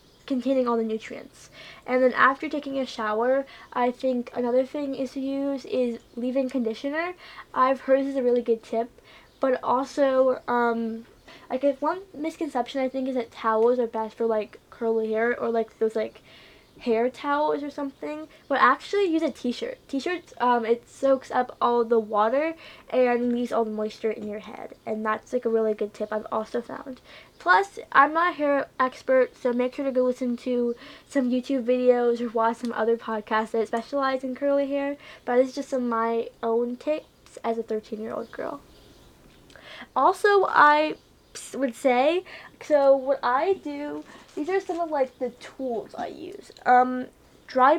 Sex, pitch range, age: female, 230-280 Hz, 10-29